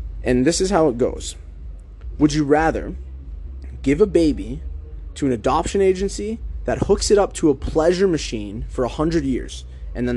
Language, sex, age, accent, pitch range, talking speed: English, male, 20-39, American, 105-145 Hz, 170 wpm